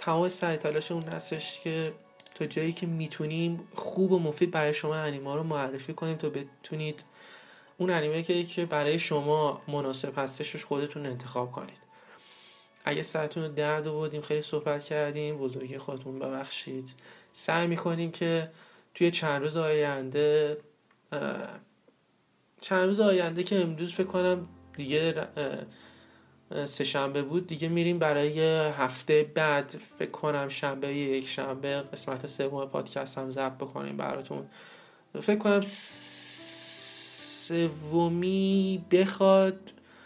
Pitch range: 140-170 Hz